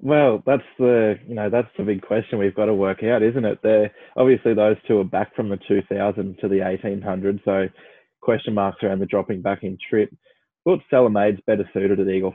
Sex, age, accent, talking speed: male, 20-39, Australian, 225 wpm